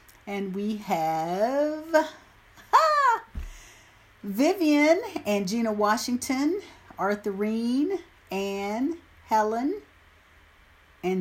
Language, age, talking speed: English, 50-69, 65 wpm